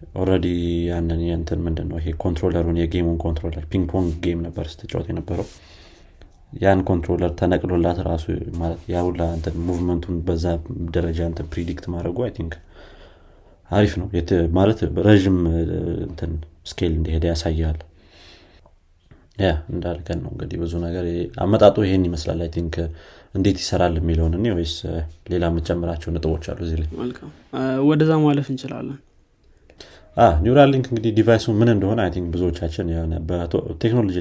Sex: male